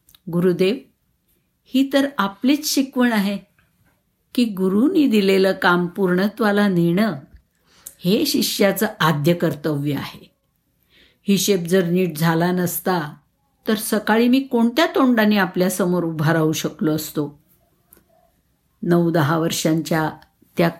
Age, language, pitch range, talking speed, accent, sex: 60-79, Marathi, 160-200 Hz, 105 wpm, native, female